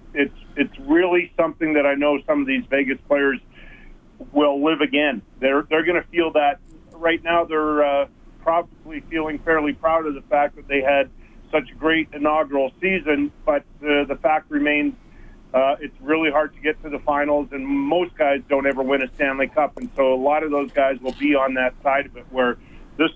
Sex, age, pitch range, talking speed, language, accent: male, 50-69, 135-155 Hz, 205 wpm, English, American